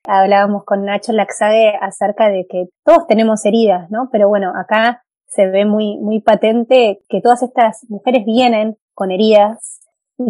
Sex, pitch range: female, 205-260 Hz